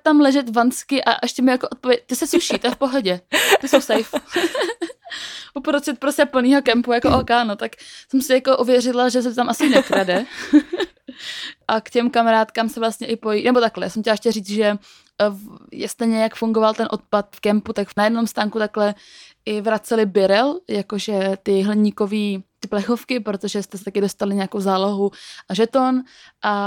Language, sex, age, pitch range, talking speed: Czech, female, 20-39, 200-240 Hz, 180 wpm